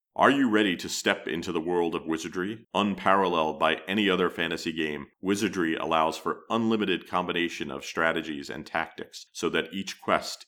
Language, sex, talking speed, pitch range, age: English, male, 165 wpm, 80-95 Hz, 40-59